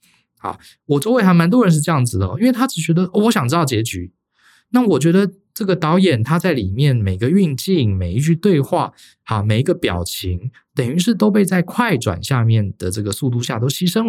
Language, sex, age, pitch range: Chinese, male, 20-39, 105-175 Hz